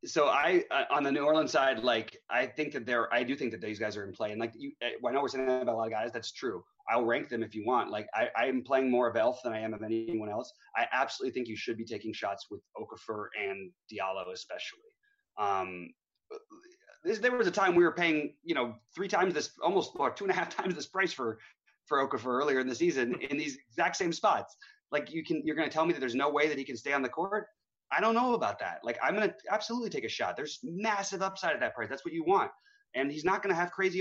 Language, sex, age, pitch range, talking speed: English, male, 30-49, 115-190 Hz, 265 wpm